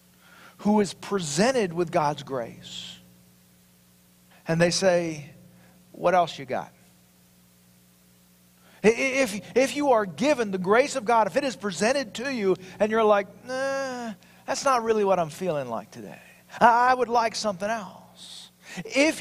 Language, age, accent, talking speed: English, 40-59, American, 140 wpm